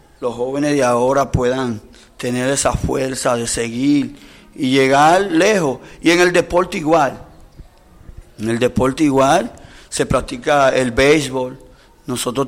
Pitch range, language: 125-145 Hz, Spanish